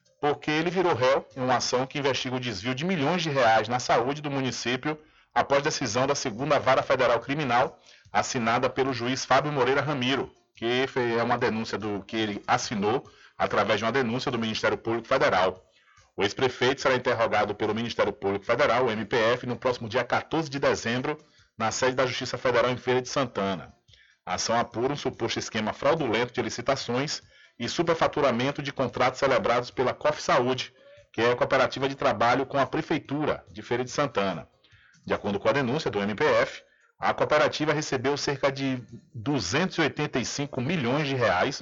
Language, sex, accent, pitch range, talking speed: Portuguese, male, Brazilian, 115-145 Hz, 170 wpm